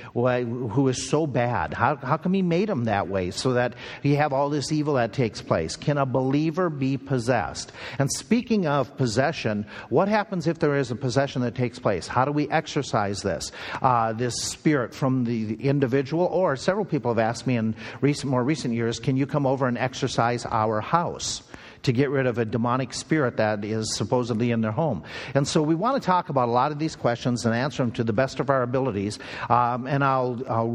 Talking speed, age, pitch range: 215 wpm, 50-69, 120-140 Hz